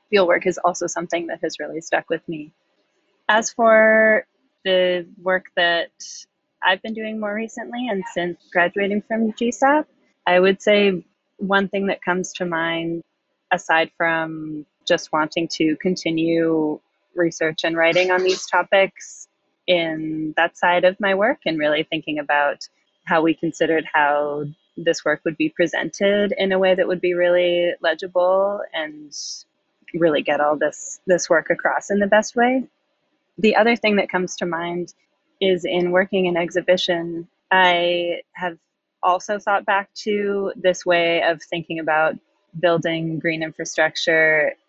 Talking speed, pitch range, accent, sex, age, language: 150 wpm, 160-195 Hz, American, female, 20-39, English